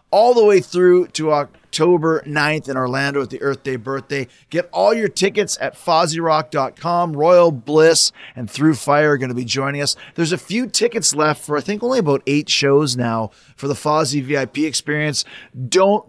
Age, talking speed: 30-49, 185 wpm